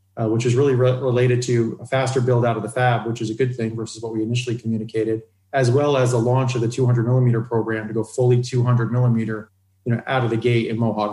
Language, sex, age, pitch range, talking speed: English, male, 30-49, 110-130 Hz, 255 wpm